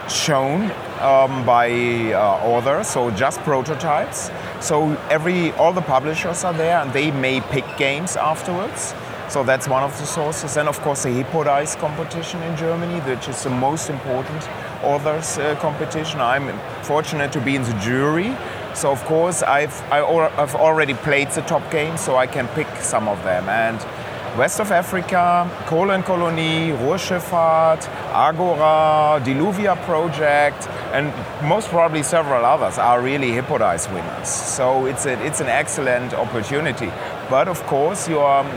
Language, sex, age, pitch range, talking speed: English, male, 30-49, 130-160 Hz, 155 wpm